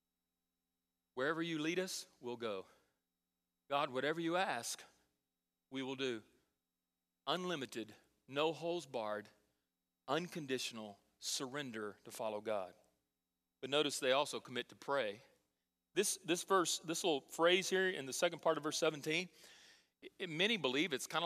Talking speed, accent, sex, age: 135 wpm, American, male, 40-59